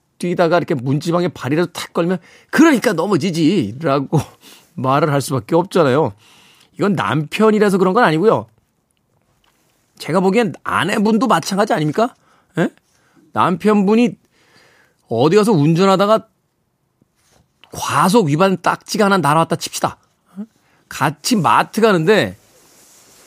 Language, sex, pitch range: Korean, male, 140-205 Hz